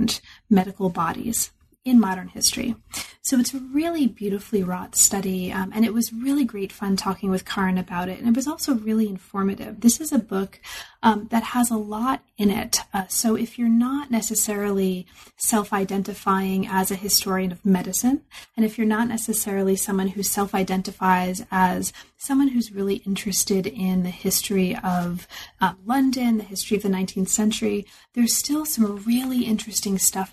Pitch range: 190-235 Hz